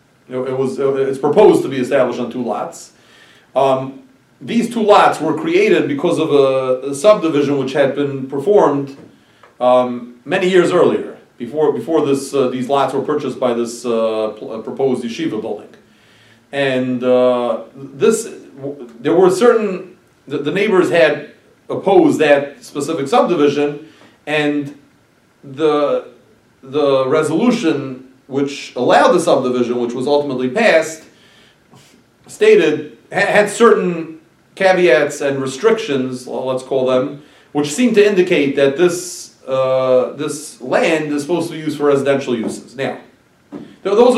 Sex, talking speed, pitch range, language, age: male, 135 wpm, 130-180 Hz, English, 40-59